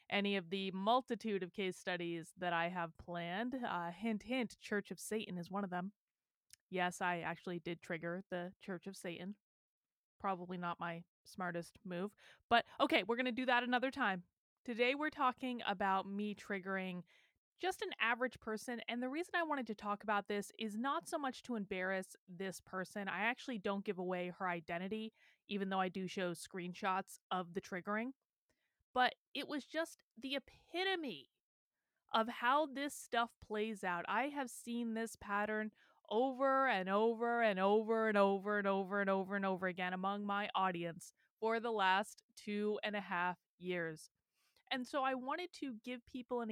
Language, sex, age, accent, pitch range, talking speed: English, female, 20-39, American, 190-255 Hz, 180 wpm